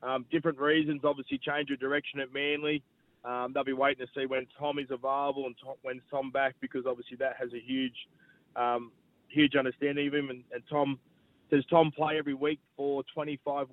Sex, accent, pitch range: male, Australian, 130-150 Hz